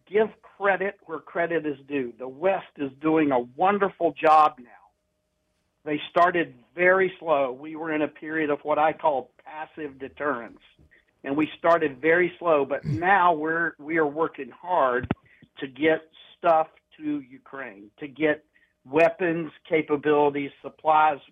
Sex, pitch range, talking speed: male, 140-160 Hz, 140 wpm